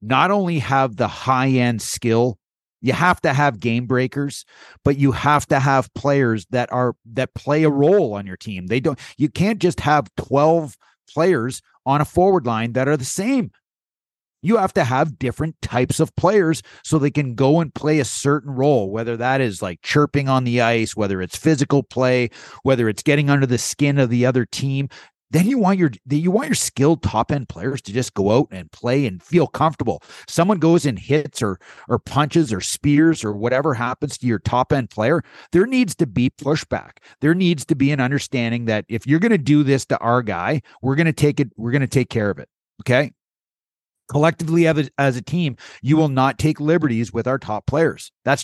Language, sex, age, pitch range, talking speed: English, male, 30-49, 120-155 Hz, 210 wpm